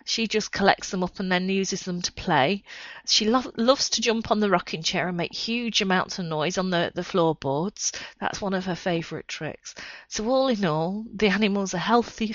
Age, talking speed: 40-59, 215 wpm